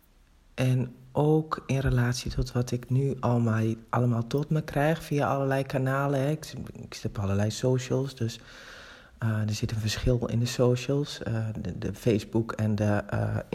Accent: Dutch